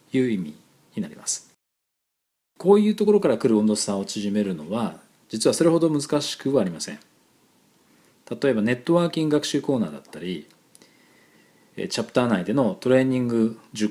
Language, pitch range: Japanese, 105-155 Hz